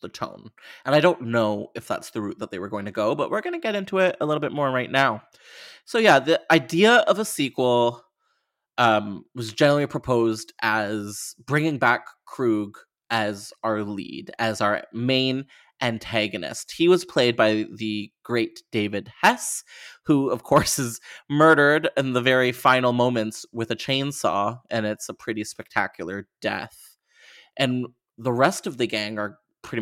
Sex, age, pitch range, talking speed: male, 20-39, 110-150 Hz, 175 wpm